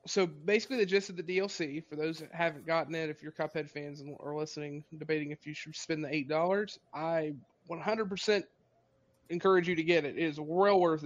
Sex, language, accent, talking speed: male, English, American, 215 wpm